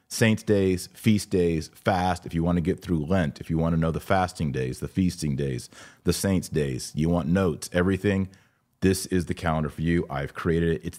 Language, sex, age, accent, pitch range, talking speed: English, male, 30-49, American, 75-95 Hz, 220 wpm